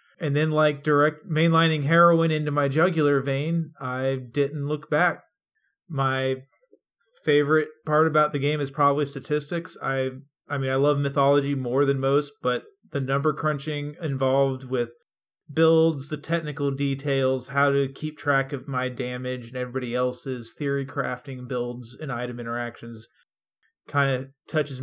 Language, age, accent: English, 30-49, American